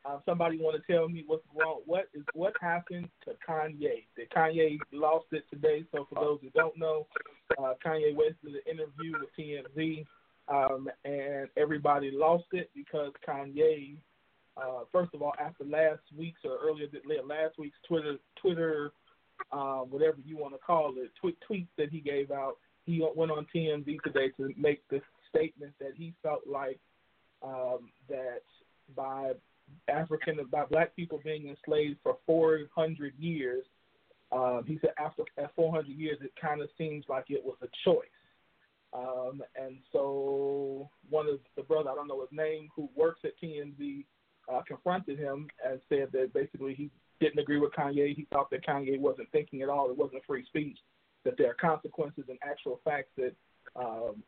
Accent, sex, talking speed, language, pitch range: American, male, 170 wpm, English, 140-160 Hz